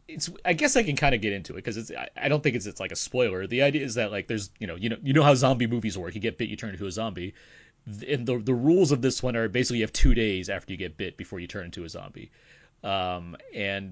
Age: 30-49